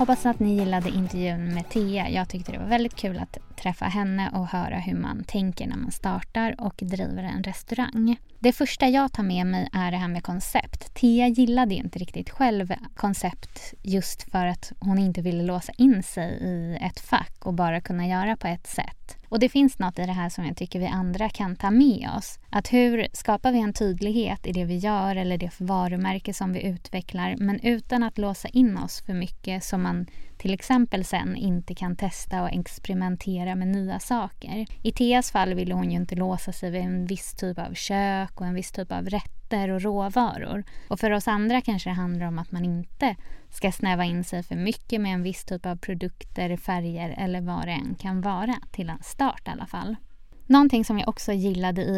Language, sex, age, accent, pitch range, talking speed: English, female, 20-39, Swedish, 180-215 Hz, 210 wpm